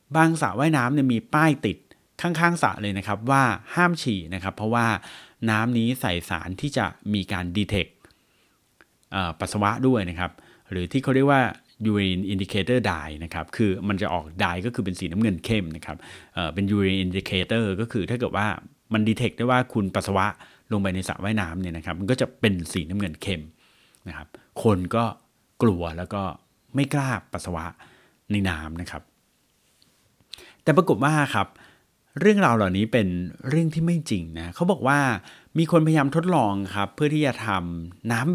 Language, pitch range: Thai, 95-125 Hz